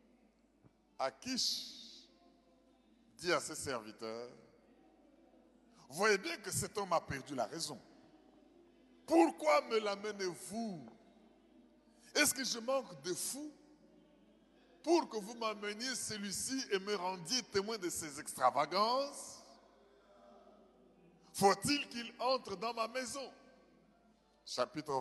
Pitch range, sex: 175-285 Hz, male